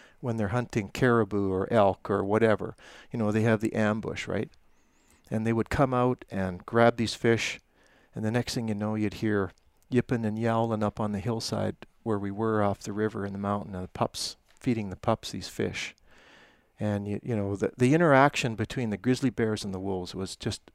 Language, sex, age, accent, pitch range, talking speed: English, male, 50-69, American, 100-115 Hz, 210 wpm